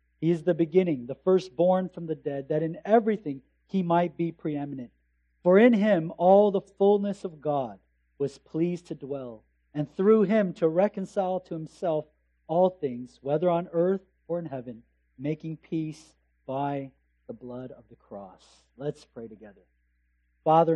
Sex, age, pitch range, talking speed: male, 40-59, 115-165 Hz, 160 wpm